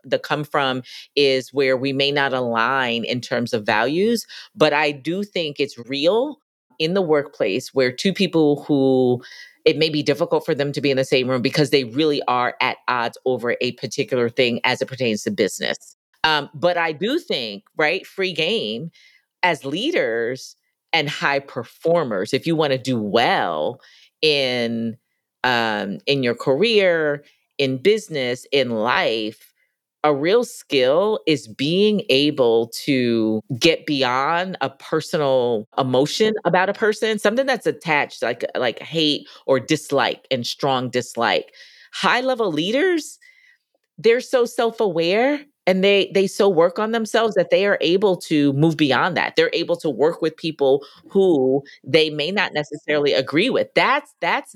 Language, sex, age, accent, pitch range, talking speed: English, female, 40-59, American, 135-200 Hz, 155 wpm